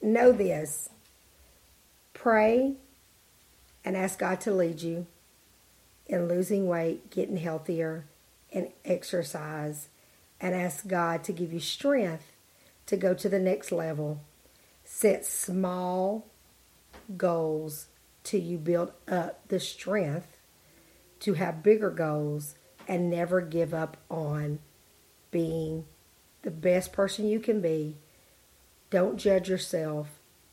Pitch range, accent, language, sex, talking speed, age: 155-190 Hz, American, English, female, 110 wpm, 50-69